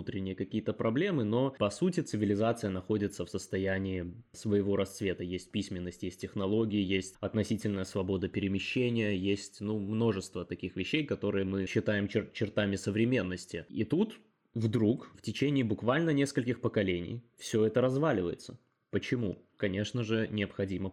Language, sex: Russian, male